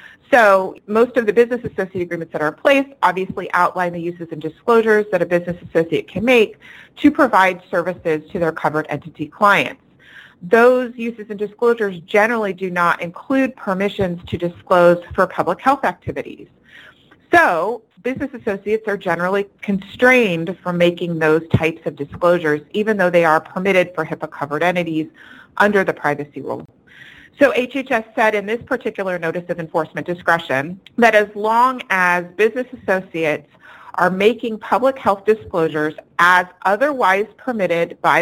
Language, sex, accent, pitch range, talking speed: English, female, American, 165-220 Hz, 150 wpm